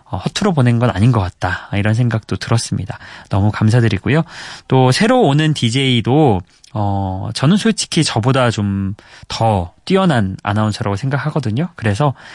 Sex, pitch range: male, 110-165 Hz